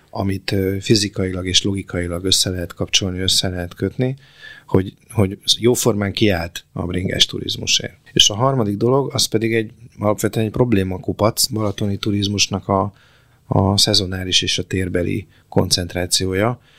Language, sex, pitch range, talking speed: Hungarian, male, 95-110 Hz, 130 wpm